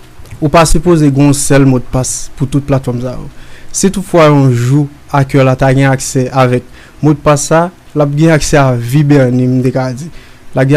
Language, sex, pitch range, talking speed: French, male, 125-145 Hz, 230 wpm